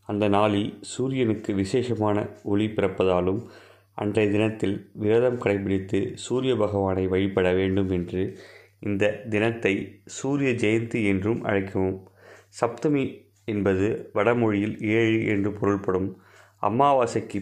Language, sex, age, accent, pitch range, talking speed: Tamil, male, 30-49, native, 95-110 Hz, 95 wpm